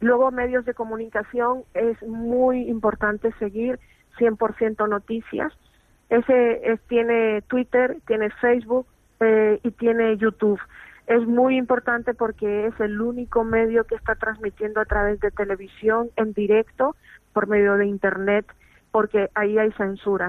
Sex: female